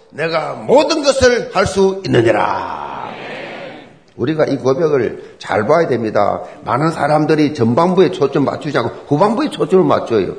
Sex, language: male, Korean